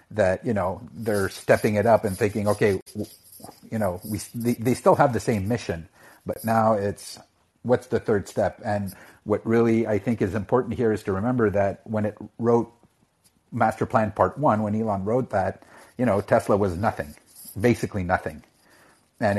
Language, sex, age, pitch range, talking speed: English, male, 50-69, 105-115 Hz, 180 wpm